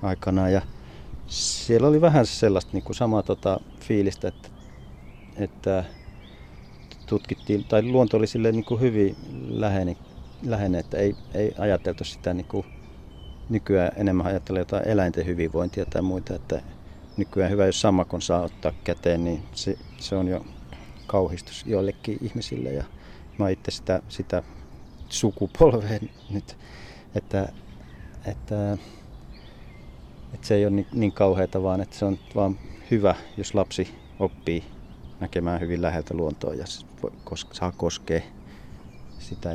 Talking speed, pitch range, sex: 125 wpm, 85-100 Hz, male